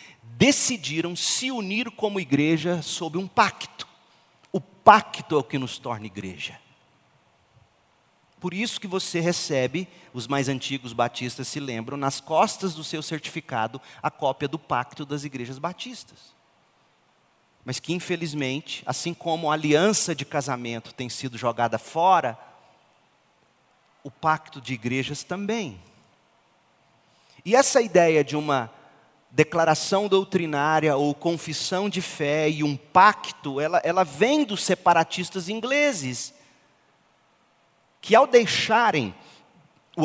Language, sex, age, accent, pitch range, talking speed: Portuguese, male, 40-59, Brazilian, 135-185 Hz, 120 wpm